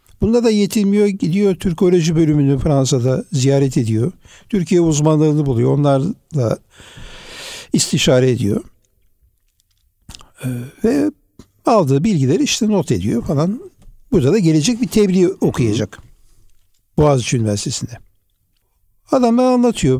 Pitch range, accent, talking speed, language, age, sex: 125-210 Hz, native, 95 wpm, Turkish, 60-79, male